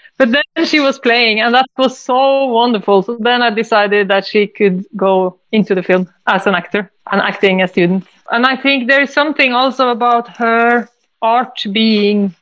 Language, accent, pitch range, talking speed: English, Swedish, 205-245 Hz, 195 wpm